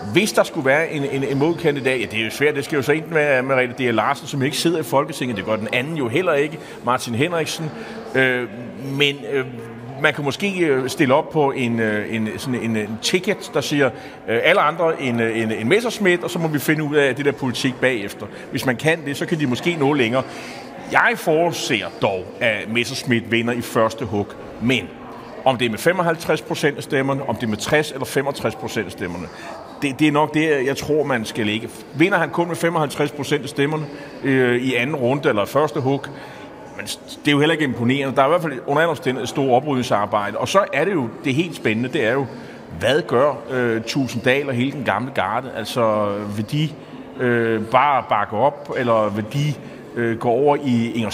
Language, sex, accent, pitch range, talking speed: Danish, male, native, 120-150 Hz, 220 wpm